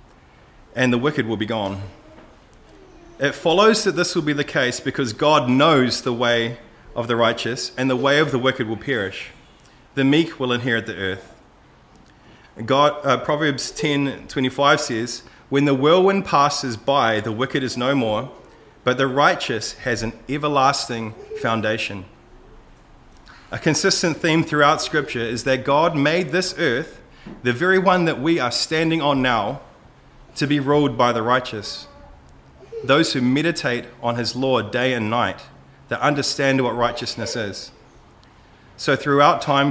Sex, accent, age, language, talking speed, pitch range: male, Australian, 30-49, English, 155 wpm, 115-145 Hz